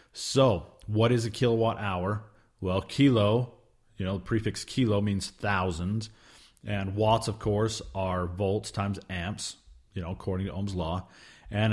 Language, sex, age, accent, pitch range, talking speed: English, male, 30-49, American, 95-115 Hz, 155 wpm